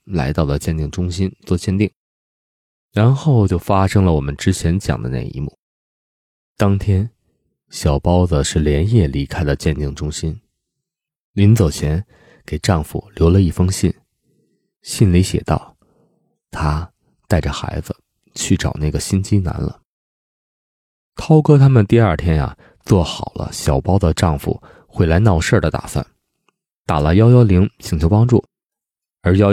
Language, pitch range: Chinese, 75-105 Hz